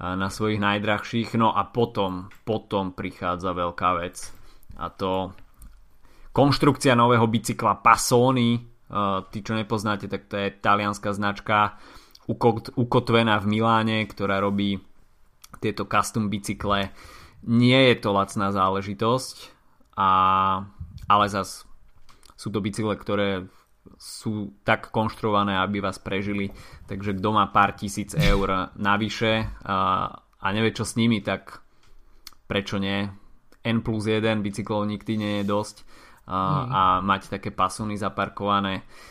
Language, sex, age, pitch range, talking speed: Slovak, male, 20-39, 95-110 Hz, 125 wpm